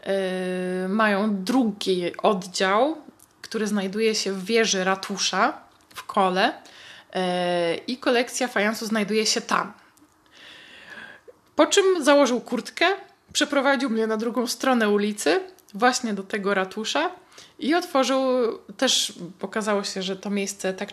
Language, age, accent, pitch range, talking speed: Polish, 20-39, native, 190-240 Hz, 115 wpm